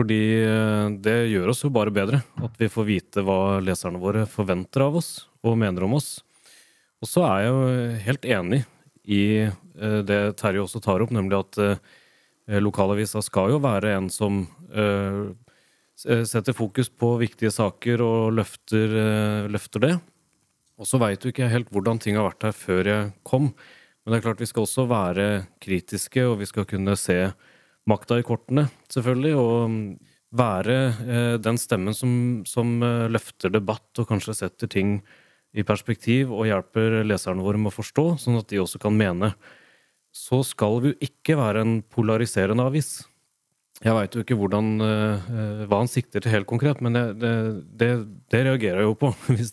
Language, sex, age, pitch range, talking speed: English, male, 30-49, 105-120 Hz, 170 wpm